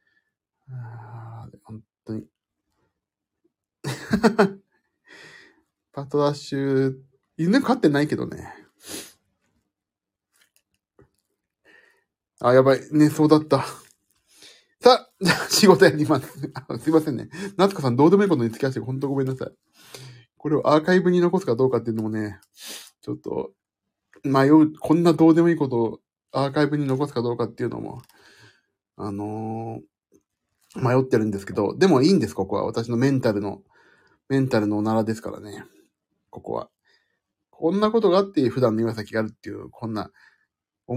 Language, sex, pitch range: Japanese, male, 115-165 Hz